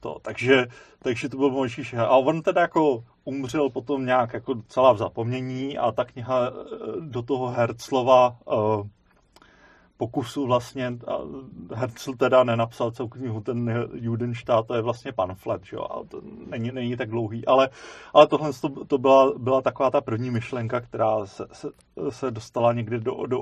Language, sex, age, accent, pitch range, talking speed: Czech, male, 30-49, native, 120-135 Hz, 165 wpm